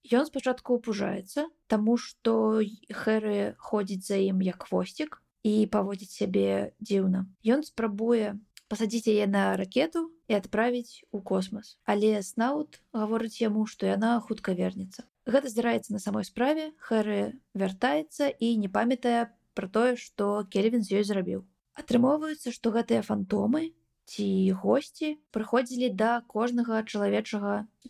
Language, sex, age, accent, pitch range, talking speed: Russian, female, 20-39, native, 205-250 Hz, 130 wpm